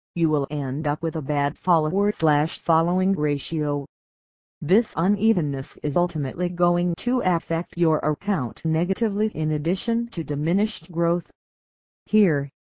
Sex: female